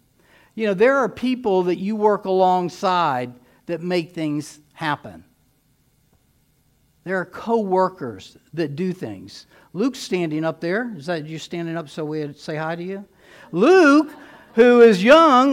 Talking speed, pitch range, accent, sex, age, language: 150 wpm, 180-265 Hz, American, male, 60-79, English